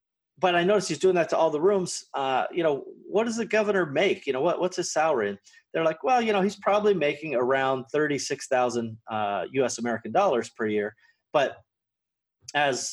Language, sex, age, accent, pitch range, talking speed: English, male, 30-49, American, 115-160 Hz, 200 wpm